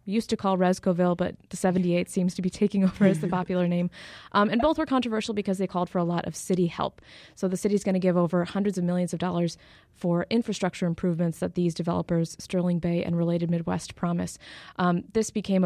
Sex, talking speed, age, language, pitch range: female, 220 wpm, 20-39, English, 175-190 Hz